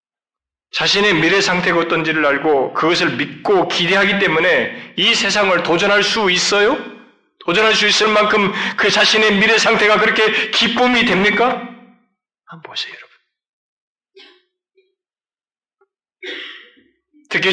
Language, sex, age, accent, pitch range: Korean, male, 40-59, native, 175-215 Hz